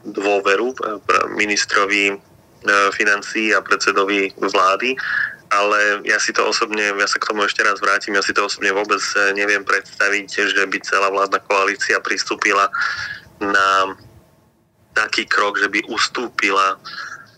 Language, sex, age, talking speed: Slovak, male, 20-39, 130 wpm